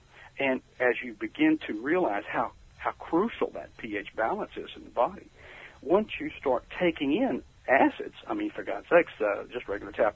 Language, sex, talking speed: English, male, 185 wpm